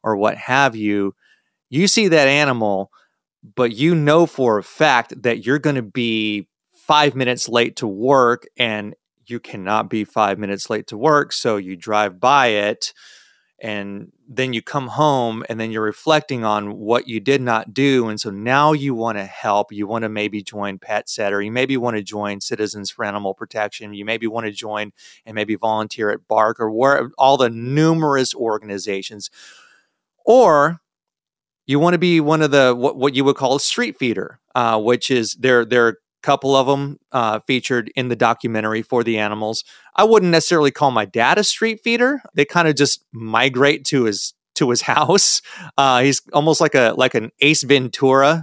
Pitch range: 110-140 Hz